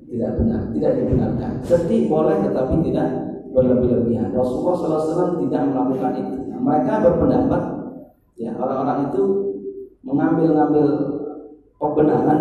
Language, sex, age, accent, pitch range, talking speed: Indonesian, male, 40-59, native, 150-210 Hz, 120 wpm